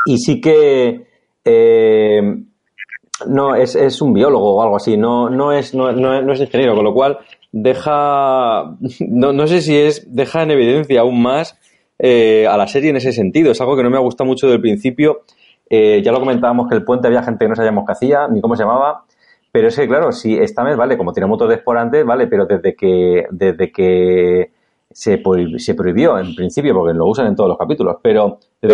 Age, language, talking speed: 30-49, Spanish, 205 wpm